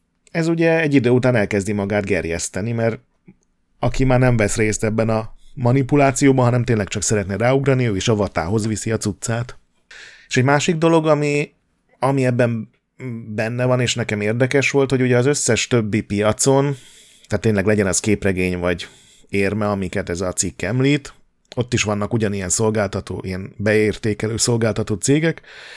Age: 30-49